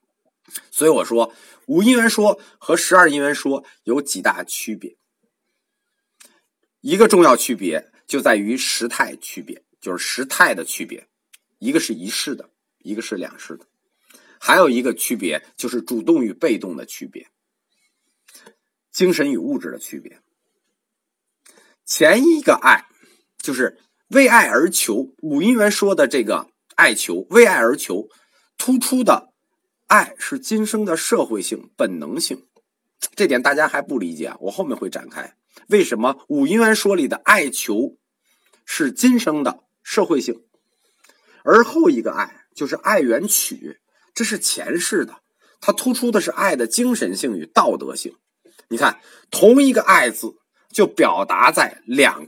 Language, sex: Chinese, male